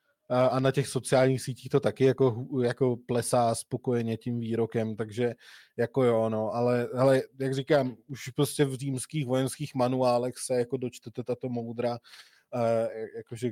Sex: male